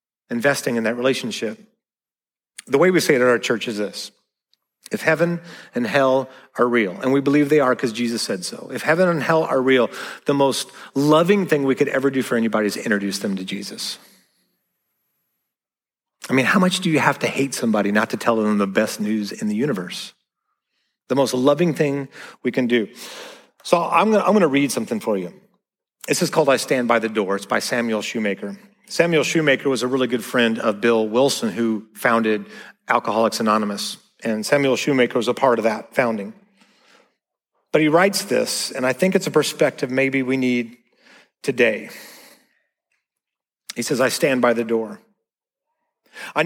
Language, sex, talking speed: English, male, 185 wpm